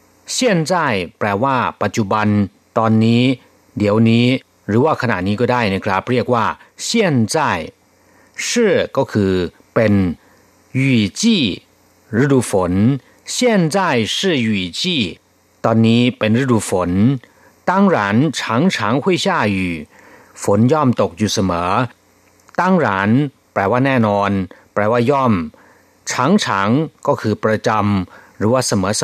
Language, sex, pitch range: Thai, male, 100-125 Hz